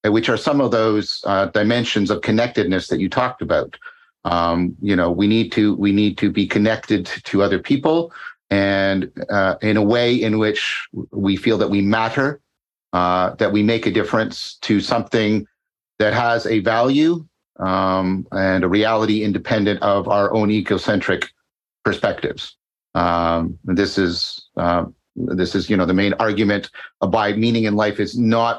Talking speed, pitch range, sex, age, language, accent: 165 wpm, 95-110 Hz, male, 50-69, English, American